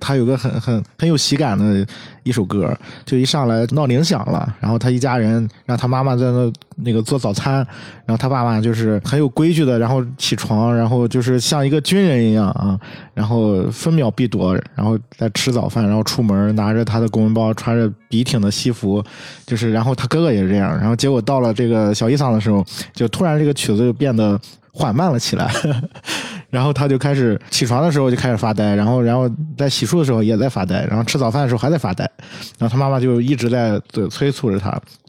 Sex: male